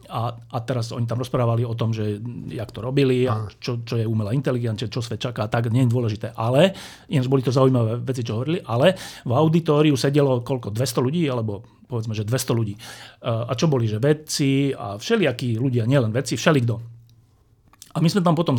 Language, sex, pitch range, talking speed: Slovak, male, 120-160 Hz, 190 wpm